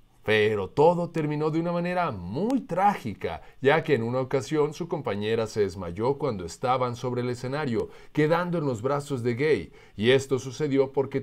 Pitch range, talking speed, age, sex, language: 120-155 Hz, 170 wpm, 40-59, male, Spanish